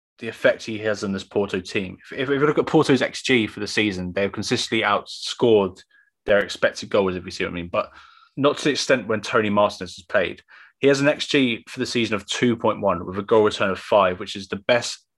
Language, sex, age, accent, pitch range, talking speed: English, male, 20-39, British, 100-130 Hz, 235 wpm